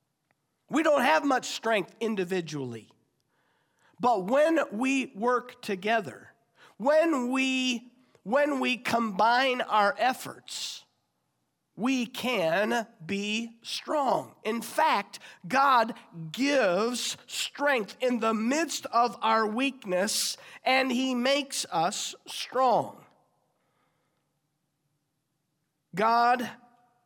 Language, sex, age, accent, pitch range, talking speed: English, male, 50-69, American, 205-255 Hz, 85 wpm